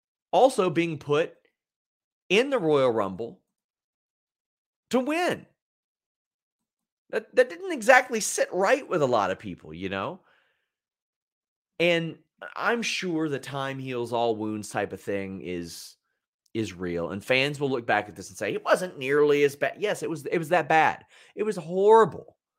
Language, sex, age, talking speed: English, male, 30-49, 160 wpm